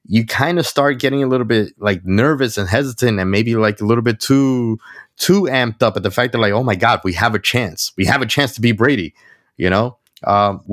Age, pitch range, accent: 30-49, 105-145 Hz, American